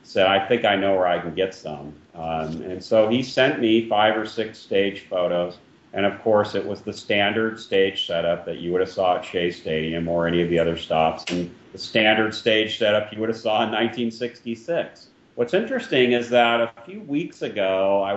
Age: 40-59